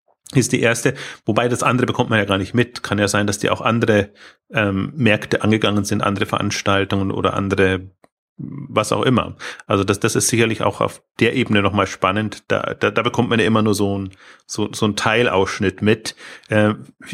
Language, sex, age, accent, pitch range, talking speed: German, male, 30-49, German, 105-125 Hz, 200 wpm